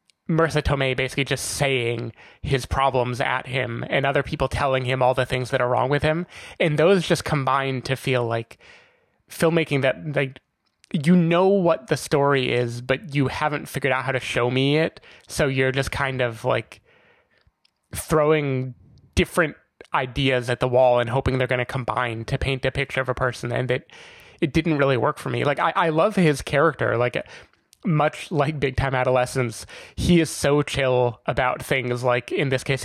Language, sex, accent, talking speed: English, male, American, 190 wpm